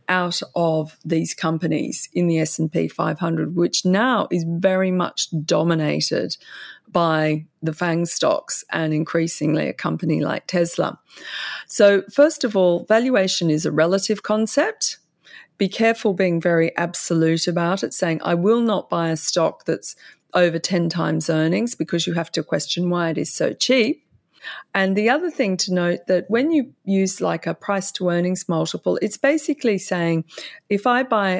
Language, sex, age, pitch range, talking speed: English, female, 40-59, 165-205 Hz, 160 wpm